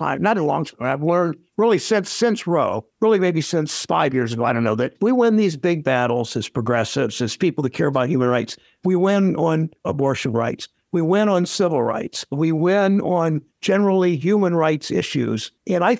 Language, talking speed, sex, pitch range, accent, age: English, 205 wpm, male, 130-185 Hz, American, 60-79